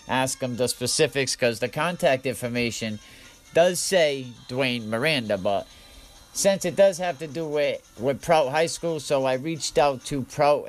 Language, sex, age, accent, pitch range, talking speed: English, male, 50-69, American, 120-145 Hz, 170 wpm